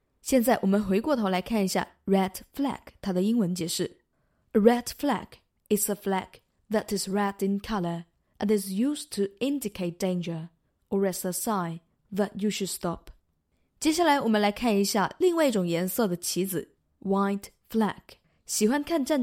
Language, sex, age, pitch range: Chinese, female, 20-39, 185-235 Hz